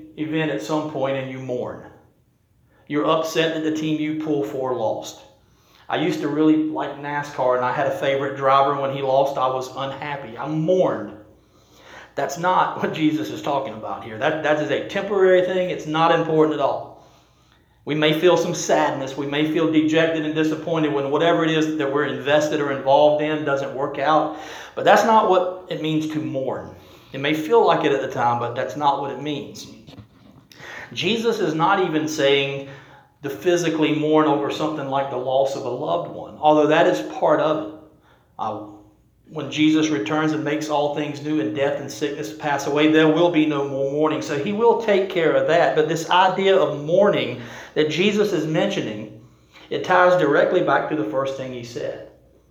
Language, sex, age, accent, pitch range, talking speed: English, male, 40-59, American, 135-155 Hz, 195 wpm